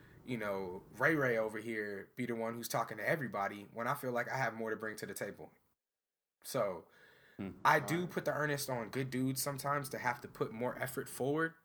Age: 20-39